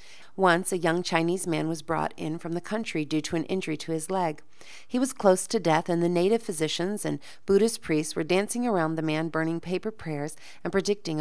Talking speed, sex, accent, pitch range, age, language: 215 wpm, female, American, 155-190 Hz, 40-59, English